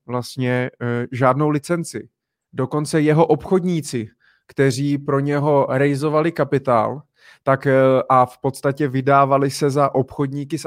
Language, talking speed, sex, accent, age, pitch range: Czech, 110 wpm, male, native, 20-39, 130-155 Hz